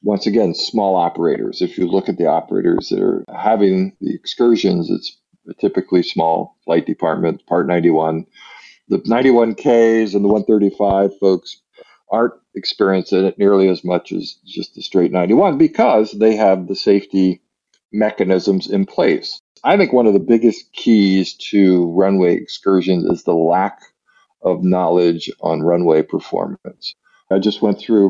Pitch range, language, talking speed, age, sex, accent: 90-110 Hz, English, 145 wpm, 50-69, male, American